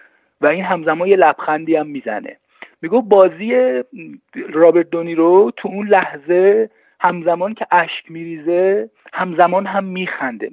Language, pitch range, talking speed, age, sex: Persian, 120-190 Hz, 120 wpm, 40-59, male